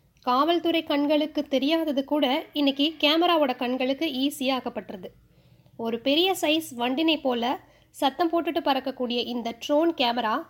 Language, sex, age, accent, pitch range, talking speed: Tamil, female, 20-39, native, 245-305 Hz, 115 wpm